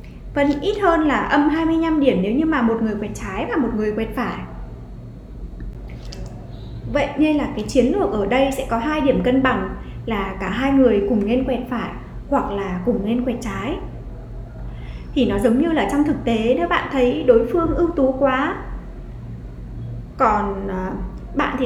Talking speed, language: 185 wpm, Vietnamese